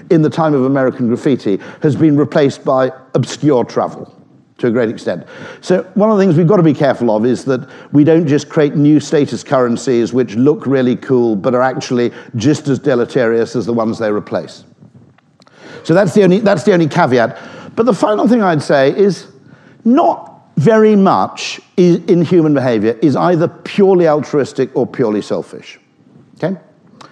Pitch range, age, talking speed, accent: 130-180 Hz, 50-69, 175 wpm, British